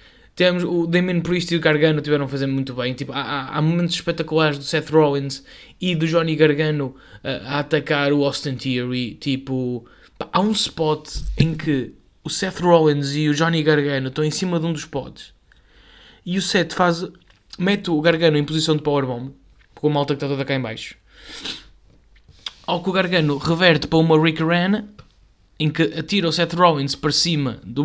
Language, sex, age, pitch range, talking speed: Portuguese, male, 20-39, 140-175 Hz, 185 wpm